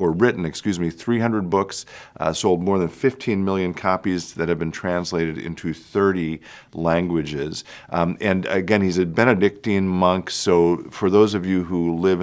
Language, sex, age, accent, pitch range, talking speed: English, male, 50-69, American, 80-90 Hz, 165 wpm